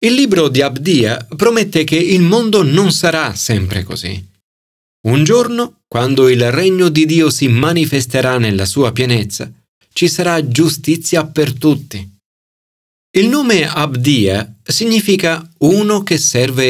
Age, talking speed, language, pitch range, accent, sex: 40-59, 130 wpm, Italian, 105-175 Hz, native, male